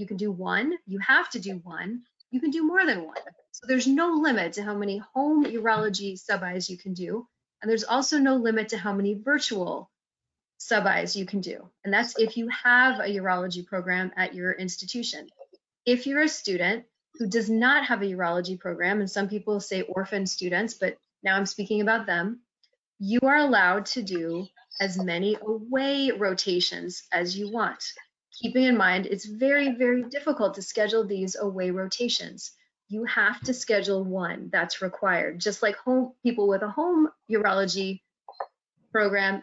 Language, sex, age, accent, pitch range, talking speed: English, female, 30-49, American, 190-240 Hz, 175 wpm